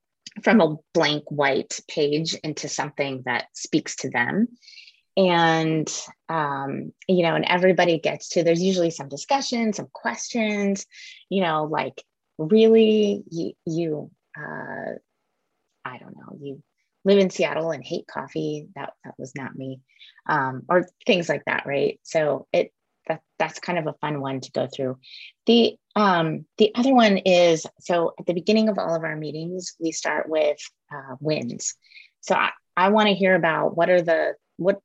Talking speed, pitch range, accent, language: 165 wpm, 150-205 Hz, American, English